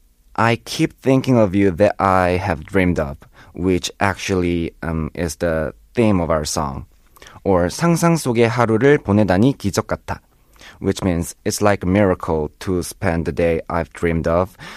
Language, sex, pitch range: Korean, male, 75-120 Hz